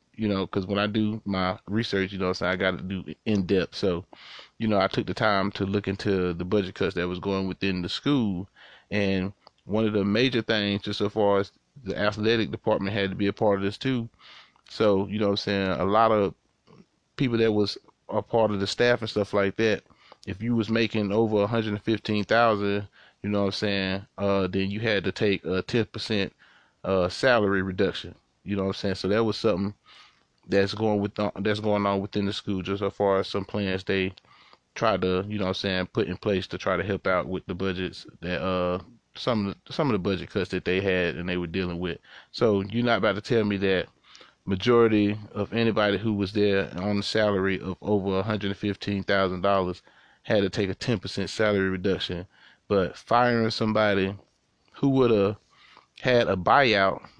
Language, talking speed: English, 210 wpm